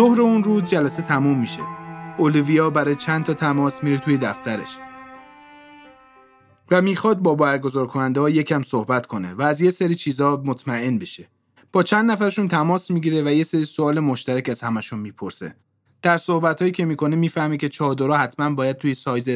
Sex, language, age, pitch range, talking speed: male, Persian, 30-49, 125-160 Hz, 170 wpm